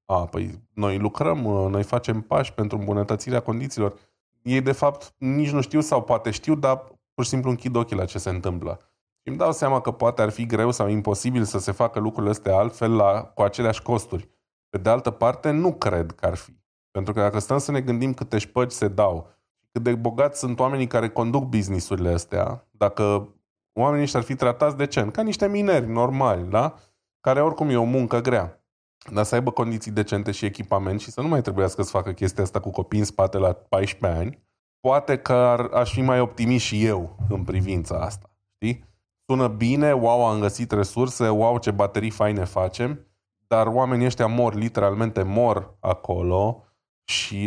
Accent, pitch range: native, 100-125 Hz